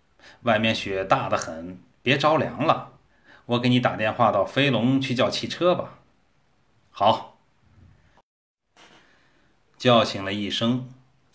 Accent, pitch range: native, 105-130 Hz